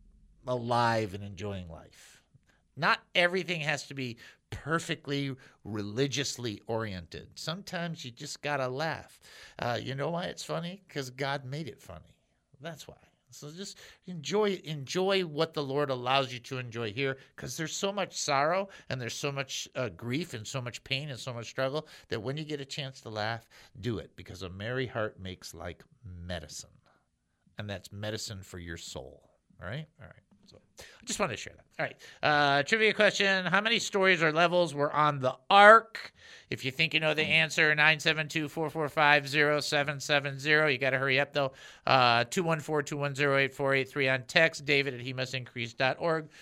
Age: 50-69